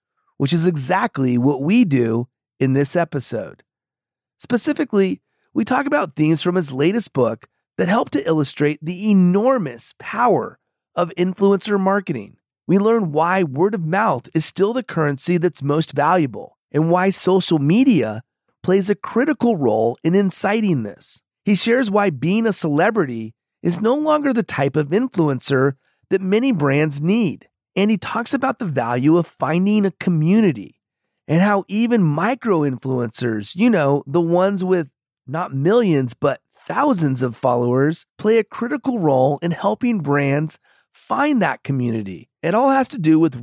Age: 40-59